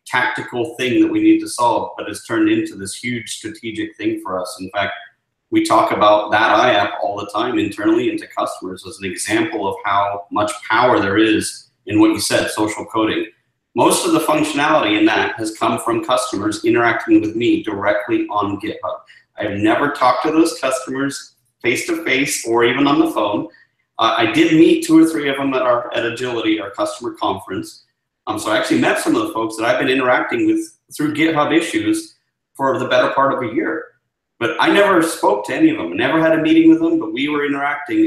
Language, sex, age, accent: English, male, 30-49, American